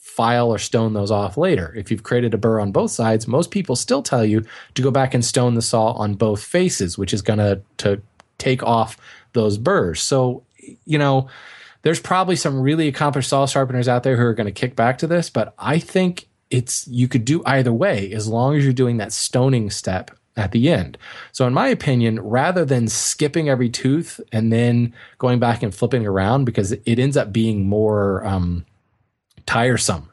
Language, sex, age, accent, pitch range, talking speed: English, male, 20-39, American, 110-135 Hz, 205 wpm